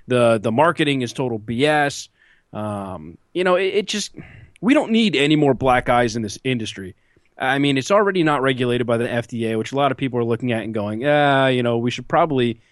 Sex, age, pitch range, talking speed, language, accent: male, 20-39, 120-155 Hz, 220 wpm, English, American